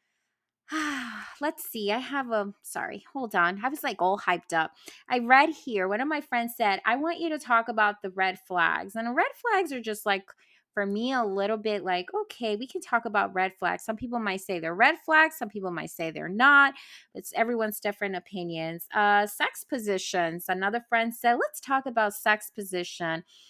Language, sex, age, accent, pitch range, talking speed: English, female, 20-39, American, 200-295 Hz, 200 wpm